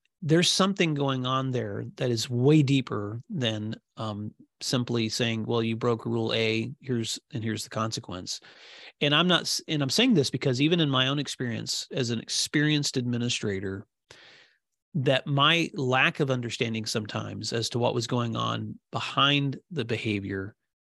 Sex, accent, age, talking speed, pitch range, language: male, American, 30-49, 160 wpm, 115-145 Hz, English